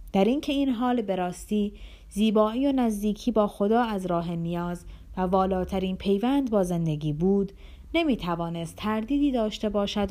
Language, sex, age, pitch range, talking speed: Persian, female, 30-49, 170-225 Hz, 150 wpm